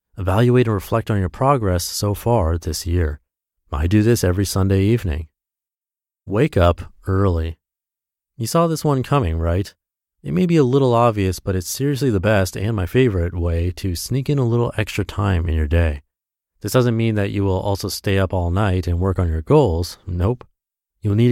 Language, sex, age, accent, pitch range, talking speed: English, male, 30-49, American, 90-120 Hz, 195 wpm